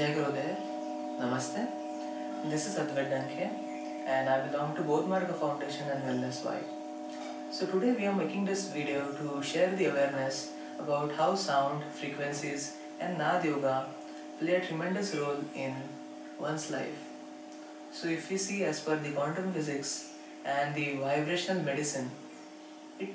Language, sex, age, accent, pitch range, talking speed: Hindi, female, 20-39, native, 145-185 Hz, 130 wpm